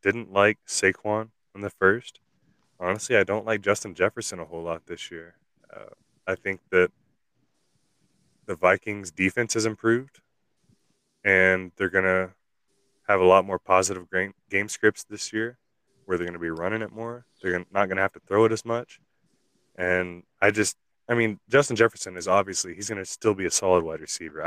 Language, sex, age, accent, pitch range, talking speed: English, male, 20-39, American, 90-105 Hz, 190 wpm